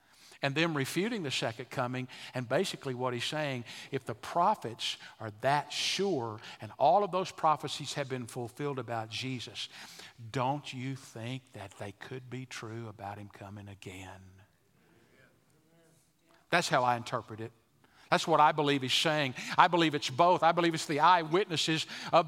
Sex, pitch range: male, 135-205 Hz